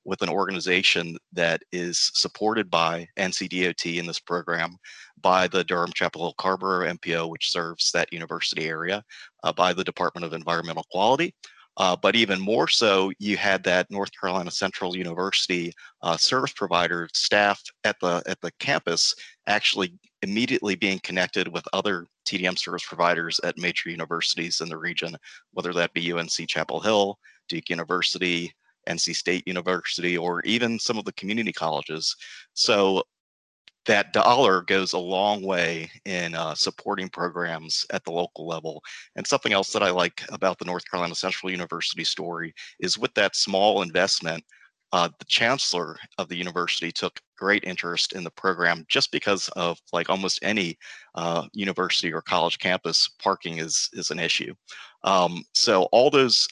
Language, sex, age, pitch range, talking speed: English, male, 30-49, 85-95 Hz, 160 wpm